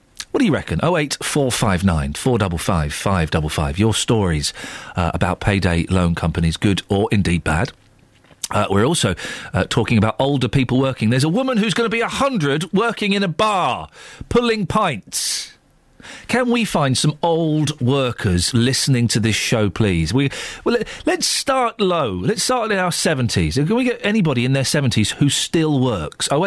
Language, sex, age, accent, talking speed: English, male, 40-59, British, 175 wpm